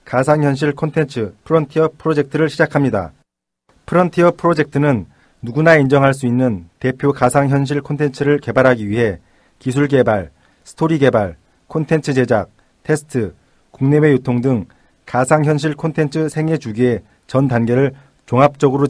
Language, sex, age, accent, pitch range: Korean, male, 40-59, native, 115-145 Hz